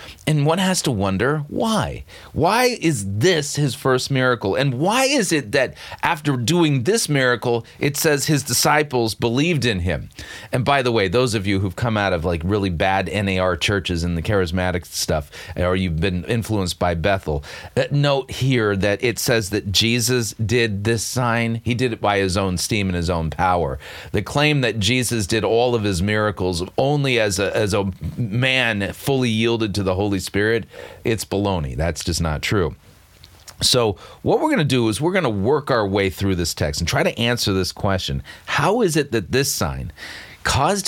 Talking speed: 190 wpm